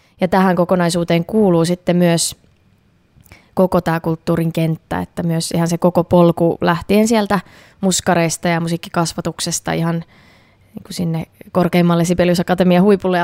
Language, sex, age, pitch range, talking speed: Finnish, female, 20-39, 165-180 Hz, 125 wpm